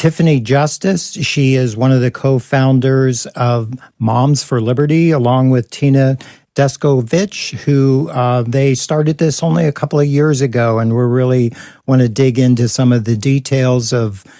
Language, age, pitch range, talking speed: English, 50-69, 120-140 Hz, 165 wpm